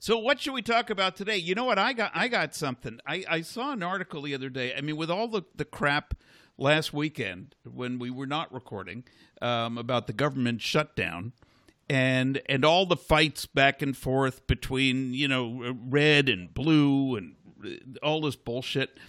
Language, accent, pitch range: English, American, 125-160 Hz